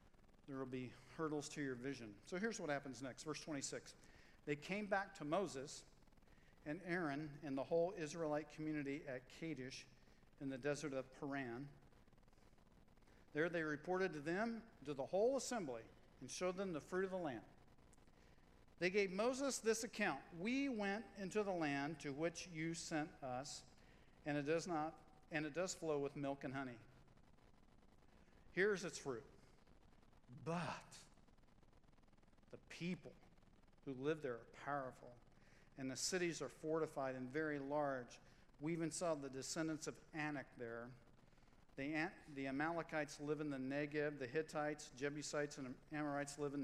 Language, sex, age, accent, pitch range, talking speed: English, male, 50-69, American, 135-165 Hz, 150 wpm